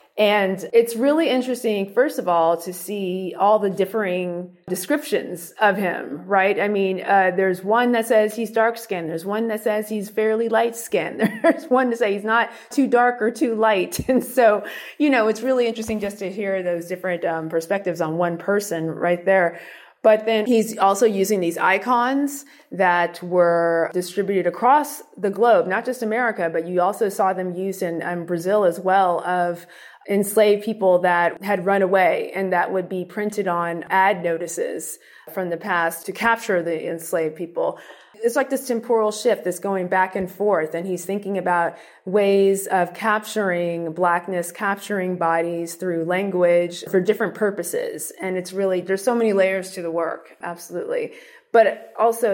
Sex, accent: female, American